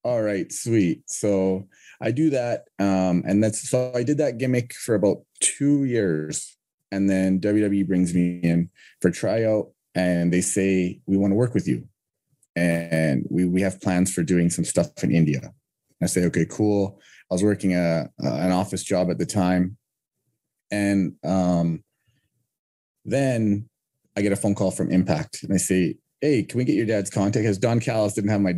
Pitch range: 90-110 Hz